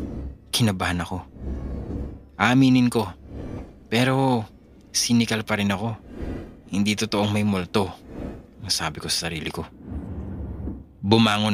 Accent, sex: Filipino, male